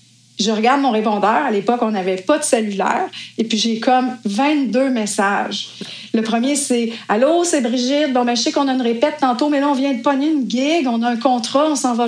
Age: 30-49